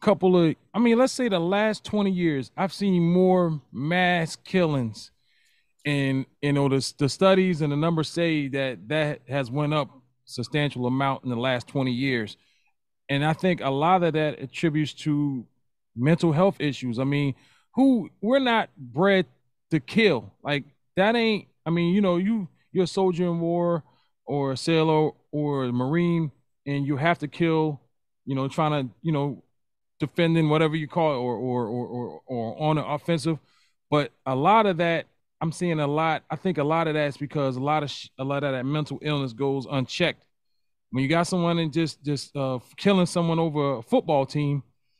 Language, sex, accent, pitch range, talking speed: English, male, American, 135-175 Hz, 190 wpm